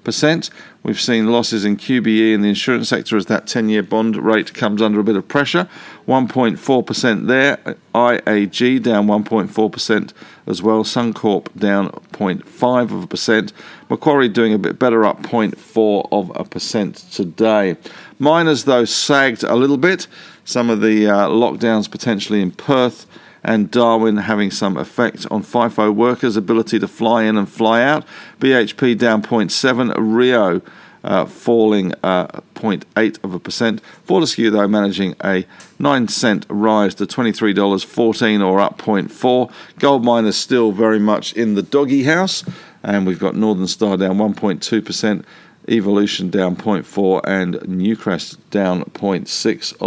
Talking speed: 135 wpm